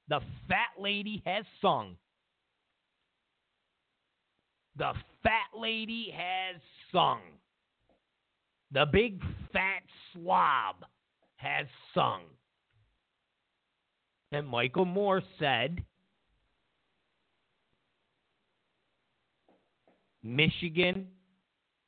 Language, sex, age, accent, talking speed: English, male, 50-69, American, 60 wpm